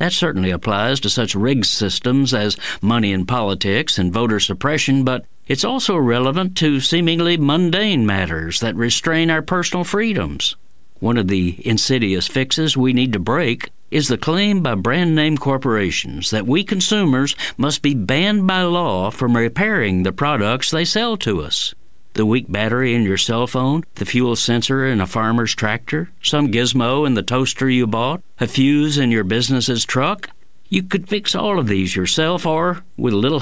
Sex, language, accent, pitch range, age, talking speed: male, English, American, 110-160 Hz, 50-69, 170 wpm